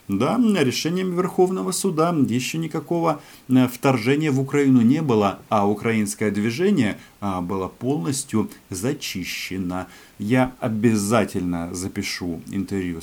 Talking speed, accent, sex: 95 wpm, native, male